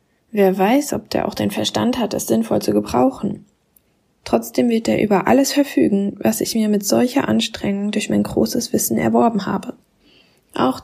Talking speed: 170 wpm